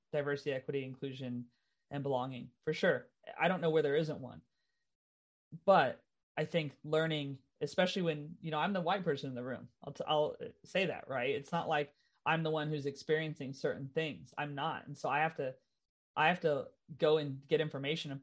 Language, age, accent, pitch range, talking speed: English, 30-49, American, 145-170 Hz, 190 wpm